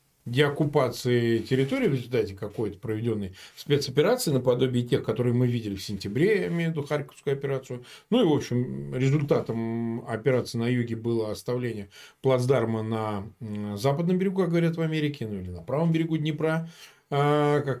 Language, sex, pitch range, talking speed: Russian, male, 125-160 Hz, 140 wpm